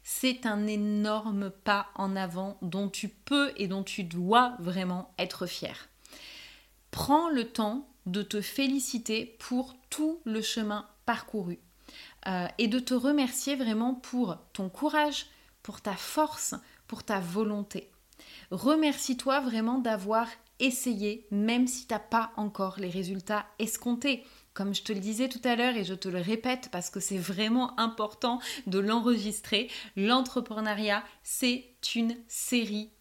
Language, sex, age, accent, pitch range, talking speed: French, female, 30-49, French, 205-255 Hz, 145 wpm